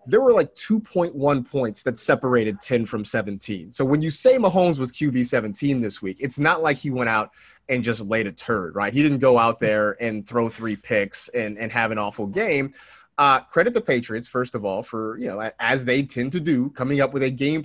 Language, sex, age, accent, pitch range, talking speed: English, male, 30-49, American, 115-165 Hz, 230 wpm